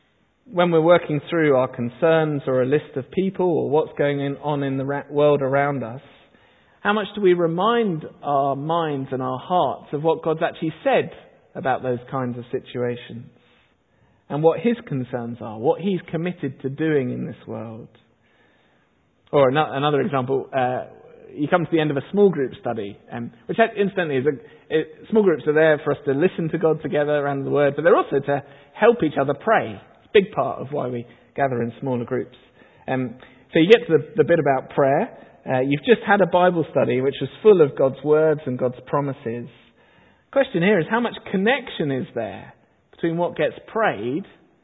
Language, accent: English, British